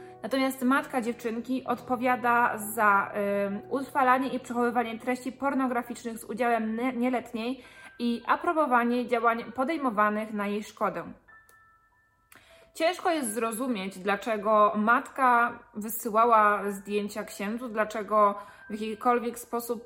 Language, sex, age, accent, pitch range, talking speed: Polish, female, 20-39, native, 210-255 Hz, 95 wpm